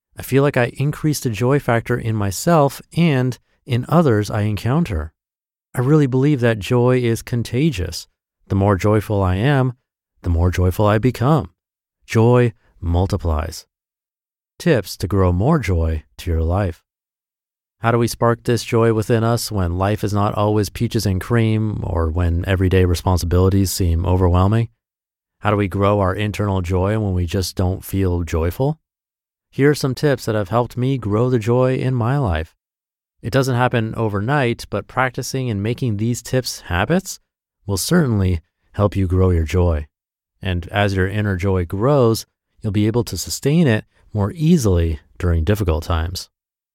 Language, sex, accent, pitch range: English, male, American, 90-120 Hz